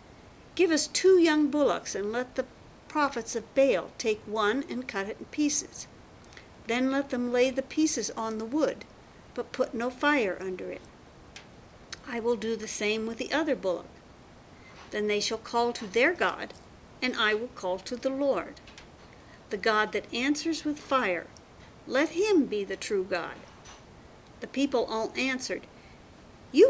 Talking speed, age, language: 165 wpm, 50-69, English